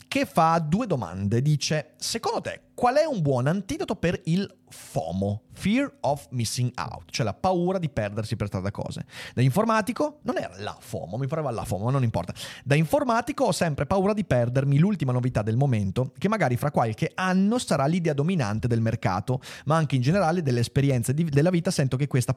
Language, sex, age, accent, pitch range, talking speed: Italian, male, 30-49, native, 120-155 Hz, 195 wpm